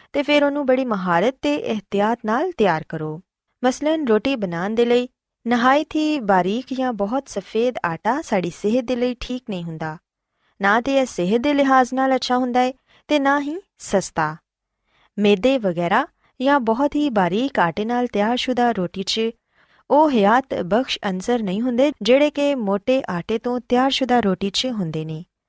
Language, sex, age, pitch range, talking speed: Punjabi, female, 20-39, 190-275 Hz, 150 wpm